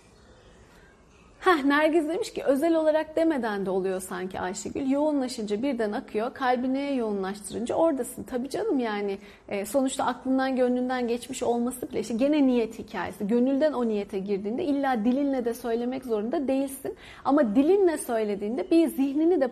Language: Turkish